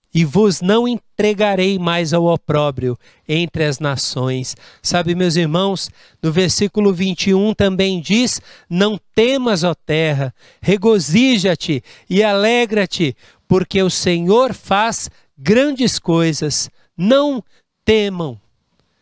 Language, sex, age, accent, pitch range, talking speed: Portuguese, male, 60-79, Brazilian, 170-220 Hz, 105 wpm